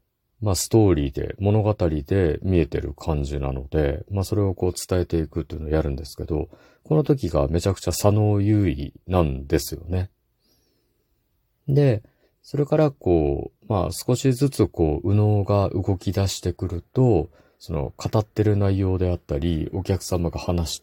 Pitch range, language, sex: 85-105 Hz, Japanese, male